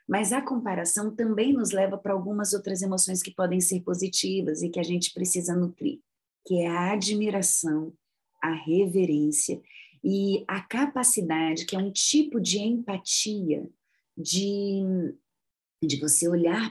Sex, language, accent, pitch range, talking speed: female, Portuguese, Brazilian, 175-210 Hz, 140 wpm